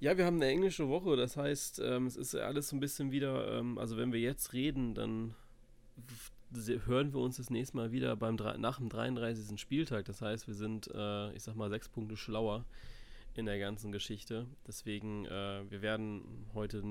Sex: male